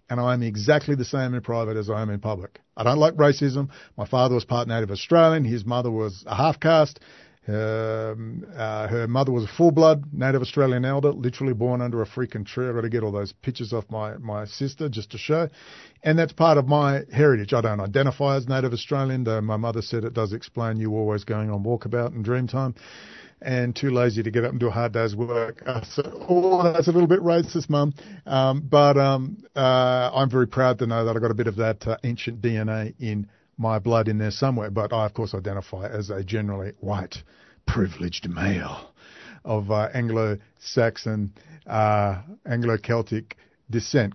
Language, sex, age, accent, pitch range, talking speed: English, male, 50-69, Australian, 110-135 Hz, 195 wpm